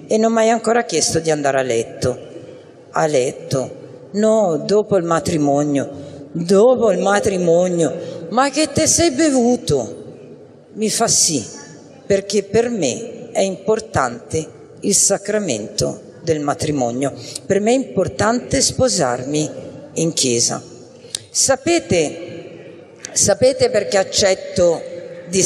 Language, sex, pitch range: Italian, female, 145-220 Hz